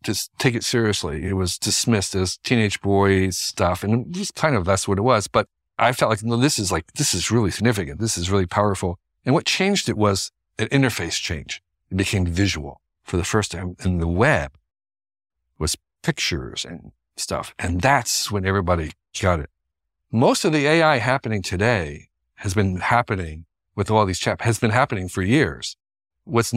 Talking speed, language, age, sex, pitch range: 185 wpm, English, 50-69, male, 85-115 Hz